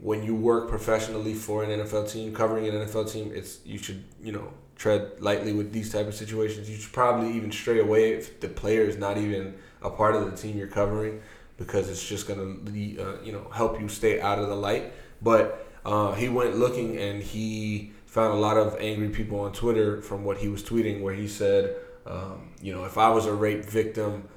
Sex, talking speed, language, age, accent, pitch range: male, 220 wpm, English, 20-39, American, 100-110 Hz